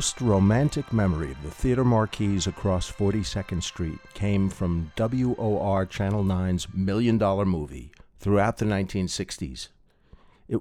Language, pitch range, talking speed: English, 90-115 Hz, 130 wpm